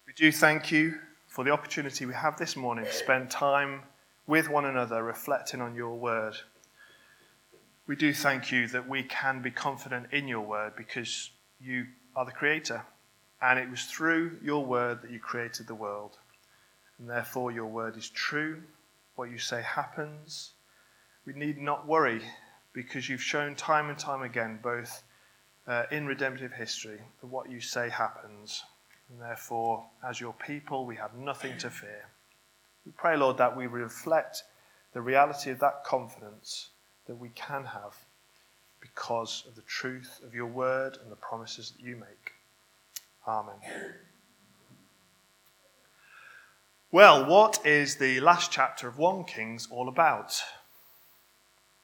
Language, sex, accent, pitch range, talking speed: English, male, British, 115-145 Hz, 150 wpm